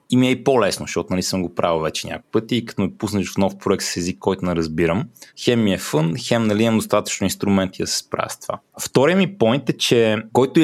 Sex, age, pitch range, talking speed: male, 20-39, 90-120 Hz, 245 wpm